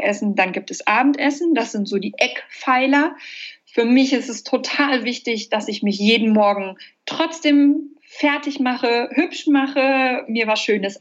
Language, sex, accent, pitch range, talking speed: German, female, German, 215-270 Hz, 155 wpm